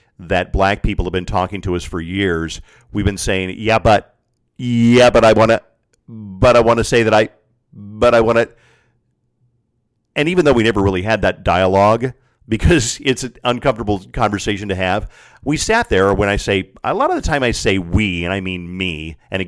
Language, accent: English, American